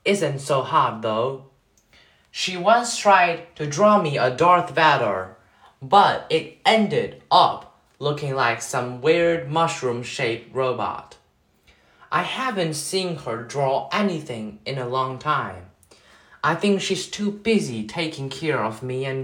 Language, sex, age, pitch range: Chinese, male, 20-39, 130-185 Hz